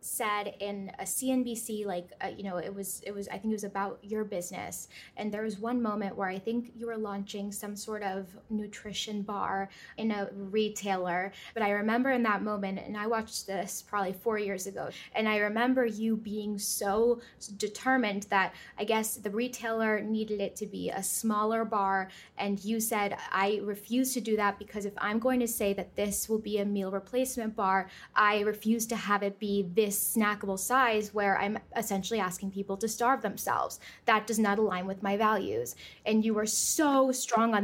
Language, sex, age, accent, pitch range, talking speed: English, female, 10-29, American, 200-225 Hz, 195 wpm